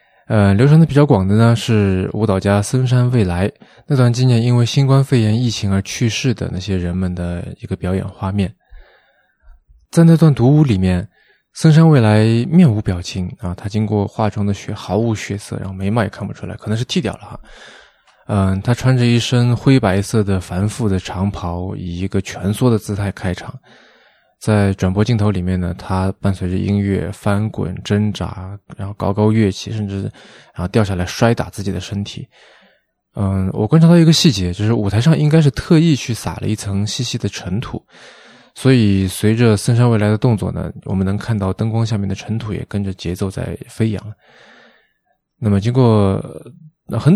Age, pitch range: 20-39, 95-120 Hz